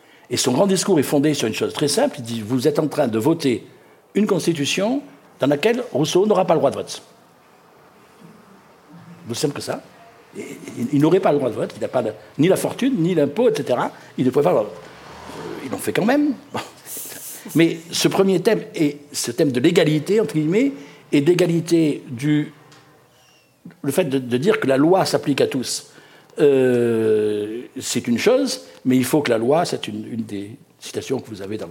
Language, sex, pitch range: French, male, 125-165 Hz